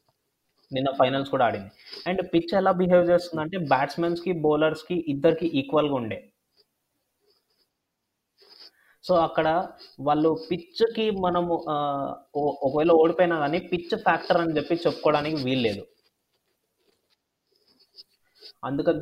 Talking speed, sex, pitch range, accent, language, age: 105 wpm, male, 125-170 Hz, native, Telugu, 20-39